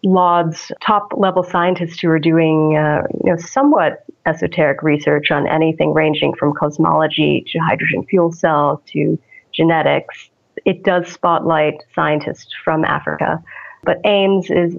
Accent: American